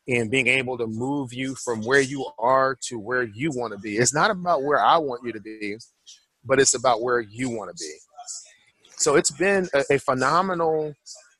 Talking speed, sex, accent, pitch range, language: 200 wpm, male, American, 115-135 Hz, English